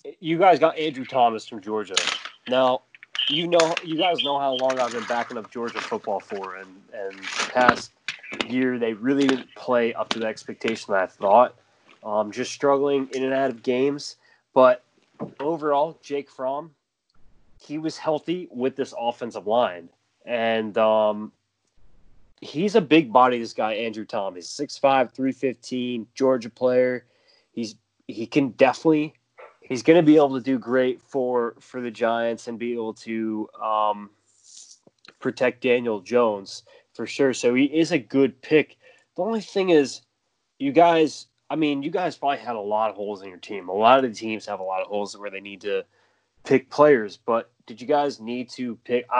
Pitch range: 115-145 Hz